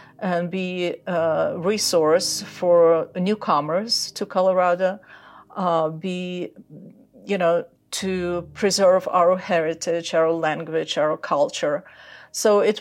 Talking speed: 105 wpm